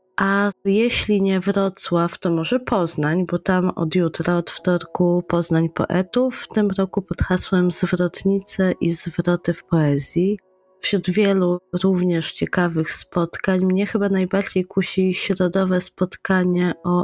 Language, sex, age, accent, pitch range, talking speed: Polish, female, 20-39, native, 165-195 Hz, 130 wpm